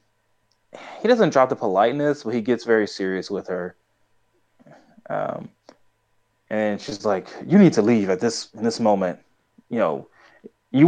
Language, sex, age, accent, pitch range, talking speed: English, male, 20-39, American, 105-125 Hz, 155 wpm